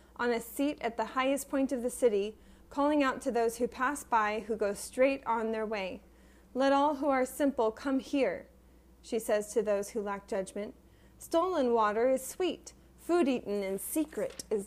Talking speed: 190 wpm